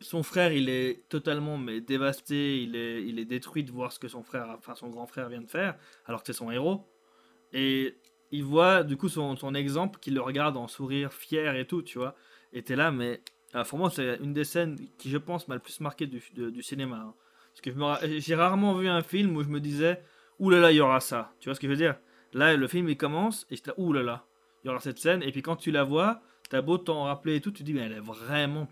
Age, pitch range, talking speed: 20-39, 125-165 Hz, 285 wpm